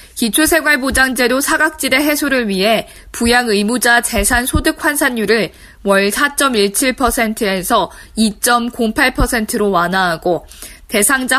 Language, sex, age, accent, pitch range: Korean, female, 20-39, native, 210-275 Hz